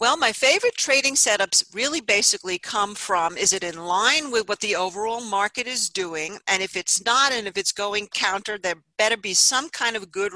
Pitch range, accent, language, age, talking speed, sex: 180-235 Hz, American, English, 50-69, 210 wpm, female